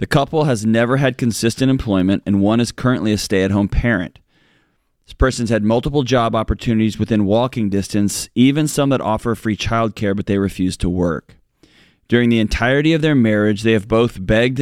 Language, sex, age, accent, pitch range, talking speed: English, male, 30-49, American, 100-125 Hz, 180 wpm